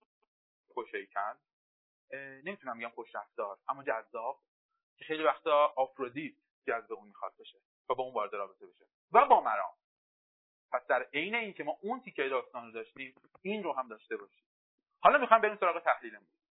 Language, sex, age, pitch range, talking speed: Persian, male, 30-49, 150-235 Hz, 155 wpm